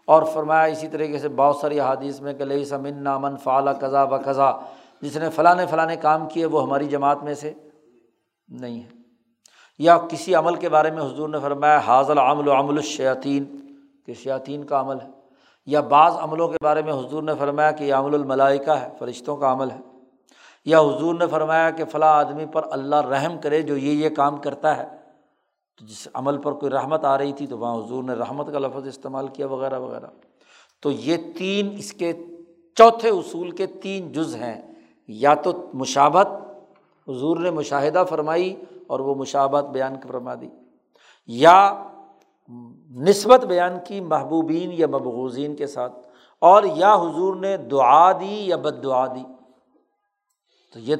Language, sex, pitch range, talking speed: Urdu, male, 135-160 Hz, 170 wpm